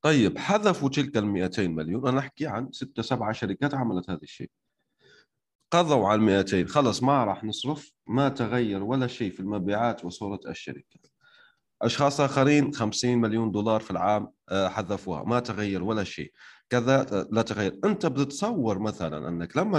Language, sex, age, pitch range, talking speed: Arabic, male, 30-49, 100-135 Hz, 150 wpm